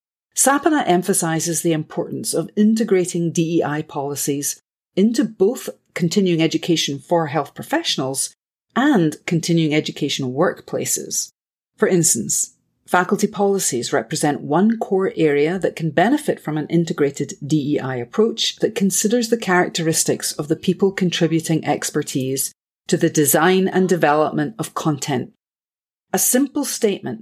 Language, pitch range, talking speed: English, 145-185 Hz, 120 wpm